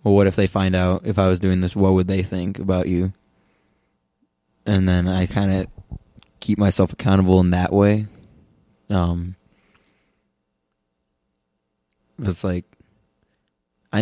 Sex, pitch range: male, 90-100 Hz